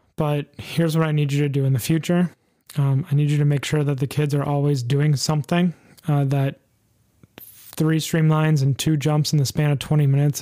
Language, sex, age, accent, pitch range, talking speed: English, male, 20-39, American, 140-155 Hz, 220 wpm